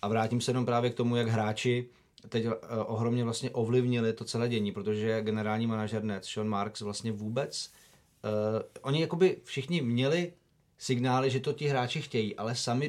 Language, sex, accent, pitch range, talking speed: Czech, male, native, 110-130 Hz, 170 wpm